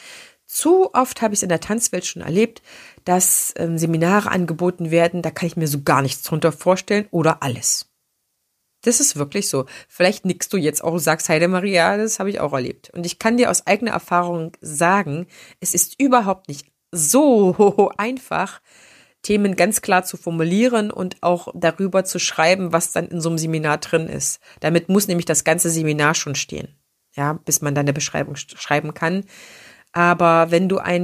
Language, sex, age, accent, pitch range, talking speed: German, female, 30-49, German, 165-205 Hz, 180 wpm